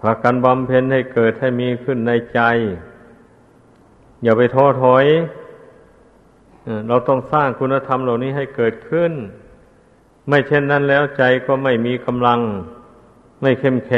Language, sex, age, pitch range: Thai, male, 60-79, 115-135 Hz